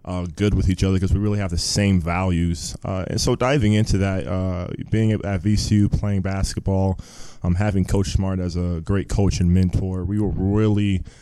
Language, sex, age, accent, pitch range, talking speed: English, male, 20-39, American, 95-110 Hz, 205 wpm